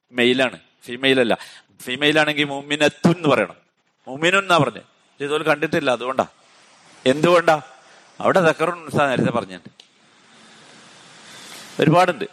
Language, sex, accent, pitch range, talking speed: Malayalam, male, native, 120-155 Hz, 85 wpm